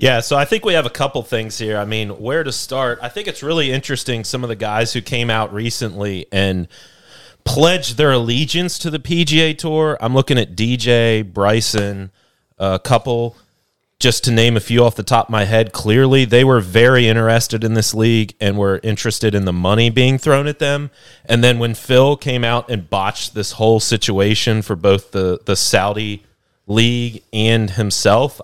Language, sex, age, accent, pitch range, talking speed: English, male, 30-49, American, 105-130 Hz, 190 wpm